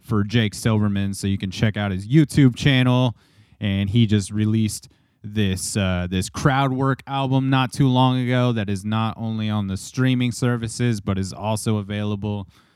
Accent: American